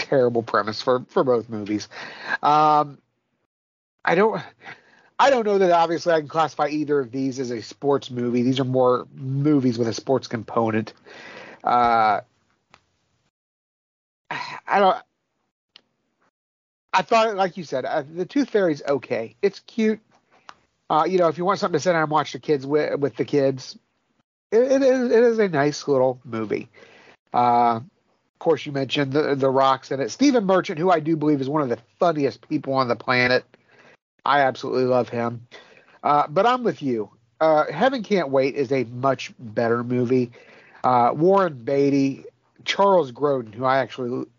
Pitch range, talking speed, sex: 120-165 Hz, 170 wpm, male